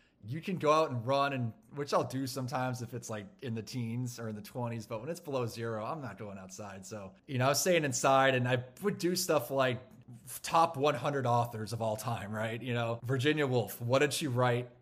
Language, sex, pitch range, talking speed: English, male, 110-140 Hz, 235 wpm